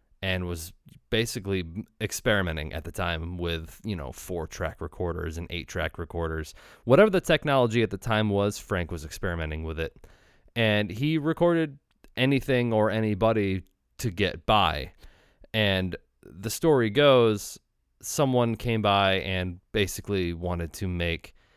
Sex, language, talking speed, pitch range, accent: male, English, 140 wpm, 85-110 Hz, American